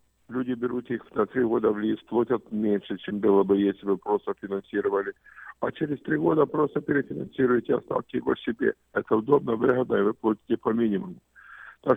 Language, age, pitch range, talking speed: Russian, 50-69, 100-120 Hz, 175 wpm